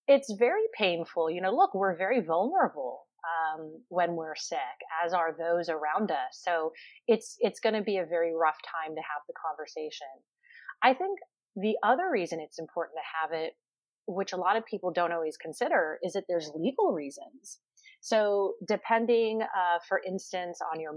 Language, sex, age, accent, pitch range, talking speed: English, female, 30-49, American, 165-215 Hz, 175 wpm